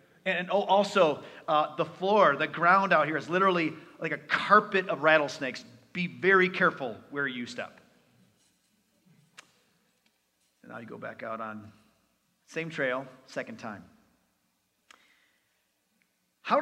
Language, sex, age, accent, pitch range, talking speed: English, male, 40-59, American, 150-225 Hz, 125 wpm